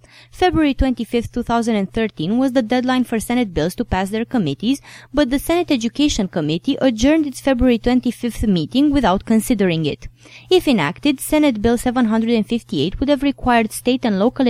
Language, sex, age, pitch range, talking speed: English, female, 20-39, 210-275 Hz, 155 wpm